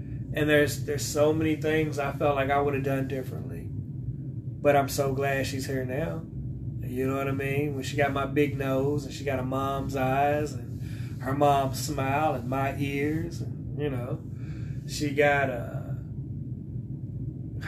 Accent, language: American, English